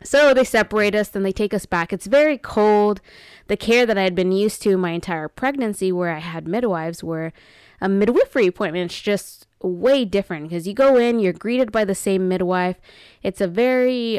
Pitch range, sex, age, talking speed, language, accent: 180-220 Hz, female, 20-39, 205 wpm, English, American